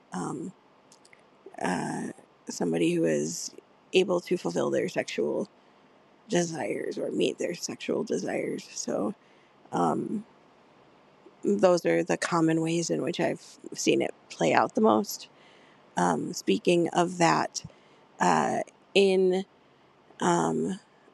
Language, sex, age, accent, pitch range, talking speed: English, female, 40-59, American, 165-185 Hz, 110 wpm